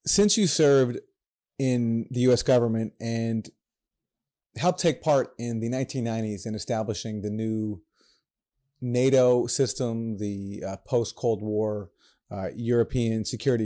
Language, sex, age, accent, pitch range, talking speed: English, male, 30-49, American, 110-130 Hz, 120 wpm